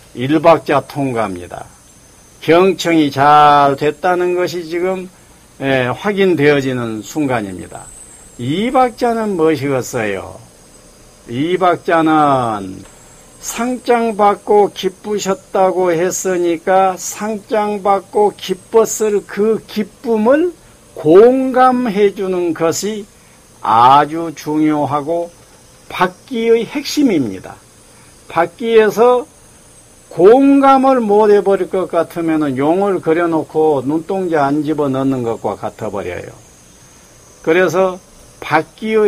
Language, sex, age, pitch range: Korean, male, 50-69, 140-200 Hz